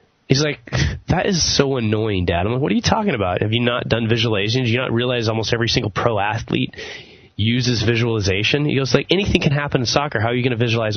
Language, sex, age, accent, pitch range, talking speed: English, male, 20-39, American, 110-140 Hz, 240 wpm